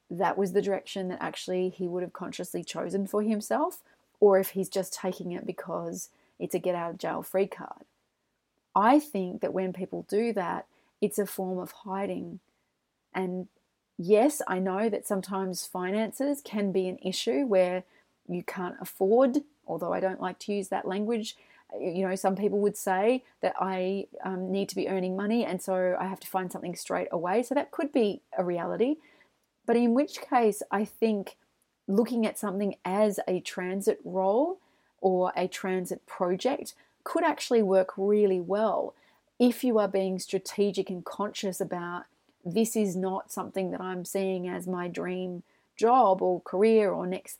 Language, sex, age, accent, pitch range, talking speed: English, female, 30-49, Australian, 185-220 Hz, 175 wpm